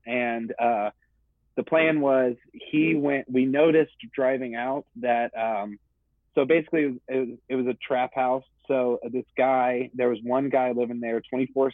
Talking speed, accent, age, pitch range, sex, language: 165 wpm, American, 30-49, 110-130 Hz, male, English